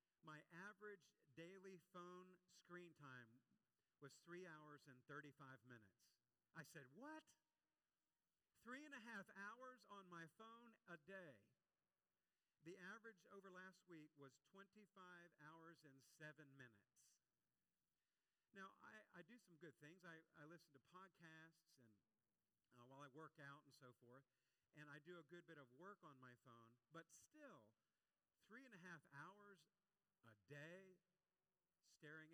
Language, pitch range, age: English, 135-185 Hz, 50-69